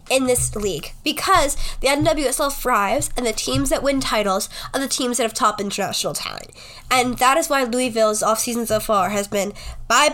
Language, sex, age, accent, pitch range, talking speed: English, female, 10-29, American, 215-280 Hz, 195 wpm